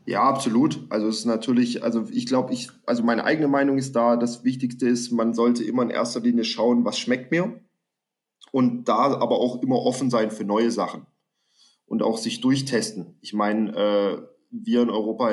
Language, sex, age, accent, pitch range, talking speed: German, male, 20-39, German, 115-135 Hz, 190 wpm